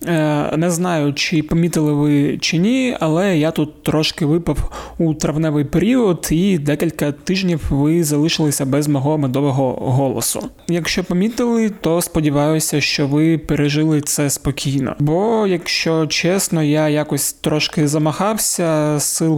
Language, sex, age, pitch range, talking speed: Ukrainian, male, 20-39, 145-165 Hz, 125 wpm